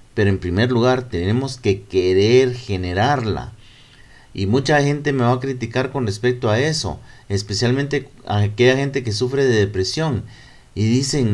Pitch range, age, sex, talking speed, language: 110-145 Hz, 40-59, male, 155 wpm, Spanish